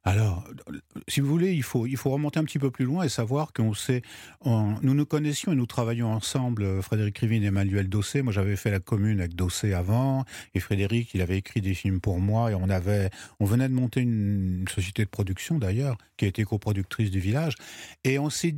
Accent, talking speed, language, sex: French, 225 wpm, French, male